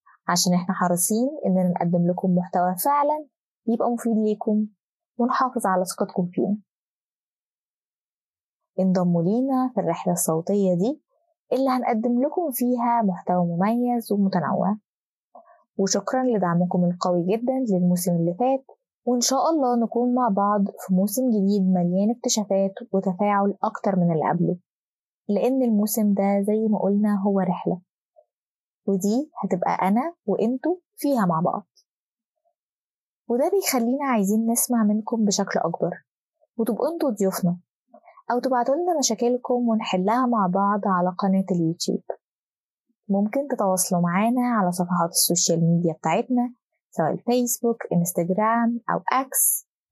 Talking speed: 115 wpm